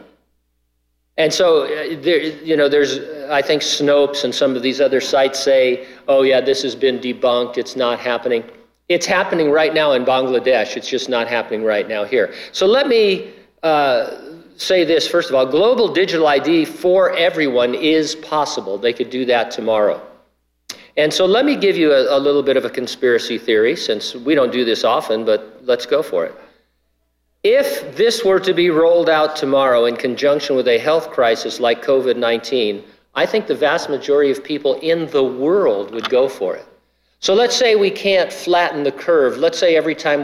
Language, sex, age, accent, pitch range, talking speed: English, male, 50-69, American, 135-185 Hz, 190 wpm